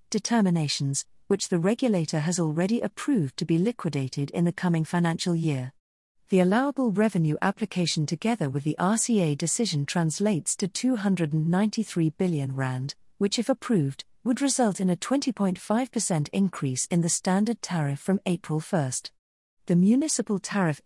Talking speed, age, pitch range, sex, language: 140 wpm, 40-59, 155-220 Hz, female, English